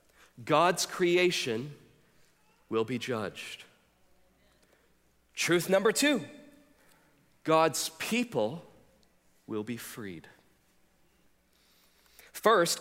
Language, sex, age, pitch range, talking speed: English, male, 40-59, 145-190 Hz, 65 wpm